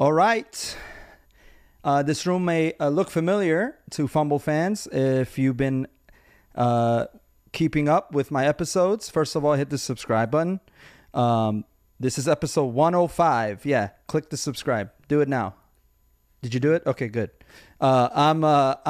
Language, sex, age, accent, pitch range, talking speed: English, male, 30-49, American, 125-170 Hz, 150 wpm